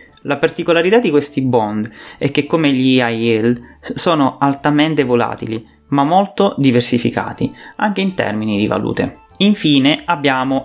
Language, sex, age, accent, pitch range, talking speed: English, male, 30-49, Italian, 120-145 Hz, 135 wpm